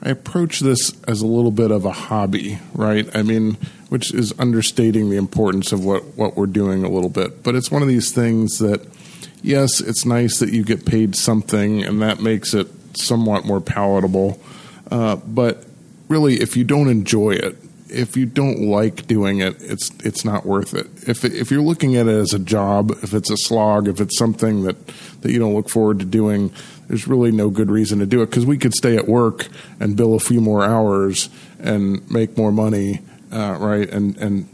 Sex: male